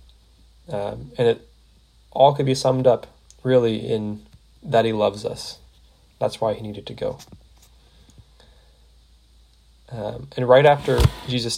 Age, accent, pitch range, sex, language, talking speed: 20-39, American, 80-125 Hz, male, English, 130 wpm